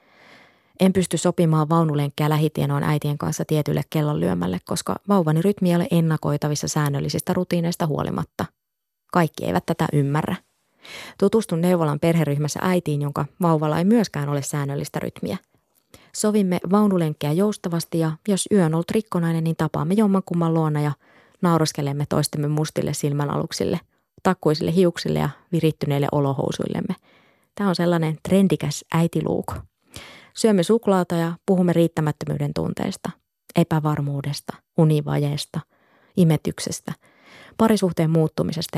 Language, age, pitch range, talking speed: Finnish, 20-39, 150-180 Hz, 110 wpm